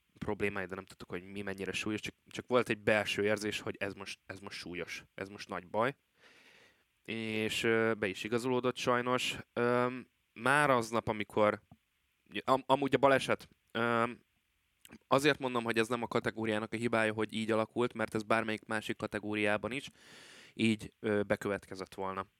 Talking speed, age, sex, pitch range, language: 155 wpm, 20-39, male, 100-115 Hz, Hungarian